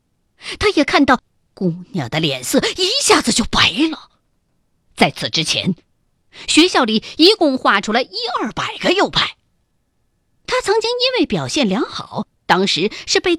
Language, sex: Chinese, female